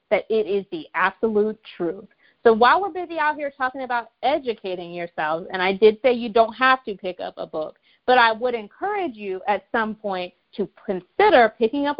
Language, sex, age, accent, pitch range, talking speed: English, female, 30-49, American, 190-265 Hz, 200 wpm